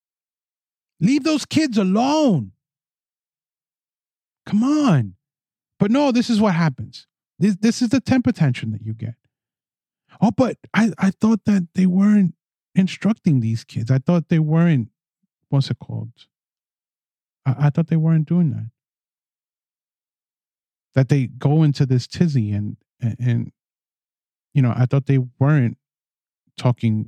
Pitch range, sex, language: 125-195 Hz, male, English